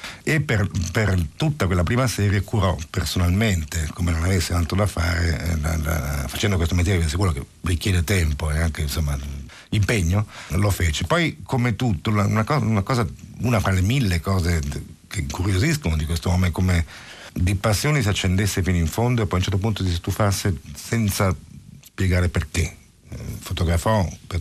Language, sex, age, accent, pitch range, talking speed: Italian, male, 50-69, native, 80-100 Hz, 170 wpm